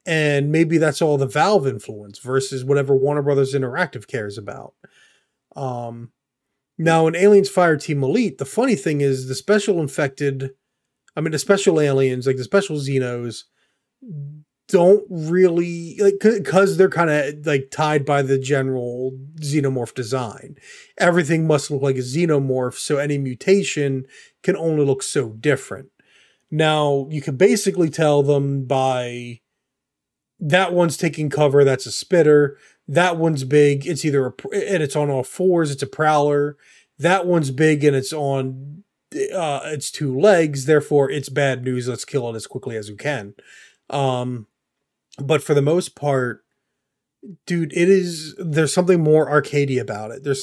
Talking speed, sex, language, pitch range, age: 155 wpm, male, English, 135-160 Hz, 30-49